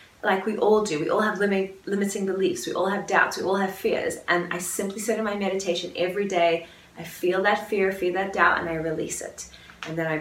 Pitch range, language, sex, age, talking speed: 175-215 Hz, English, female, 20-39, 235 wpm